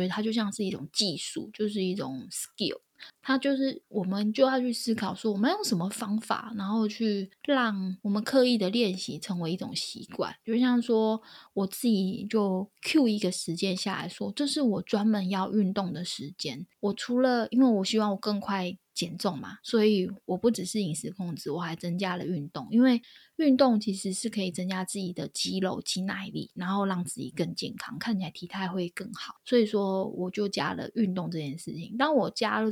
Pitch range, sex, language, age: 185-225 Hz, female, Chinese, 10-29